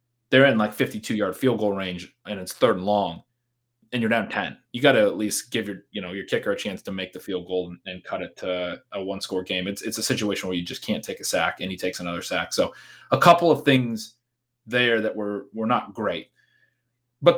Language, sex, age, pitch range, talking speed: English, male, 30-49, 105-130 Hz, 250 wpm